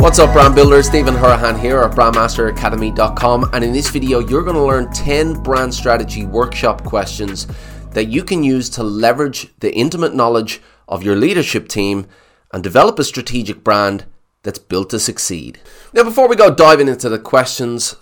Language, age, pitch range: English, 20-39, 100-130 Hz